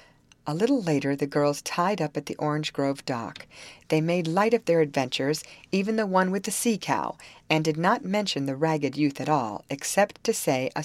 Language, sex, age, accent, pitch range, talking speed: English, female, 40-59, American, 145-195 Hz, 205 wpm